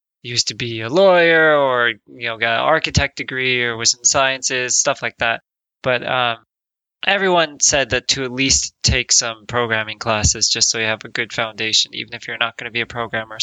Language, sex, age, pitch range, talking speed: English, male, 20-39, 115-130 Hz, 210 wpm